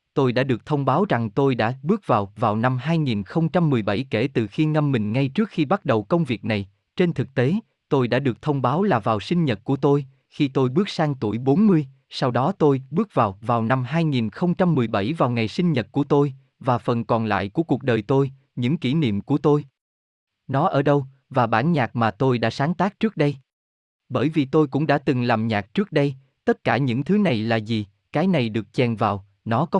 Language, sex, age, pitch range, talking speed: Vietnamese, male, 20-39, 115-150 Hz, 220 wpm